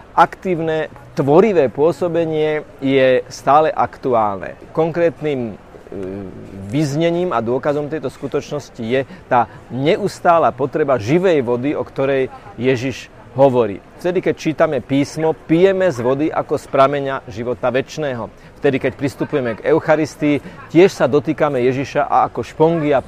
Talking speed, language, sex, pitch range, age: 120 wpm, Slovak, male, 130-160 Hz, 40-59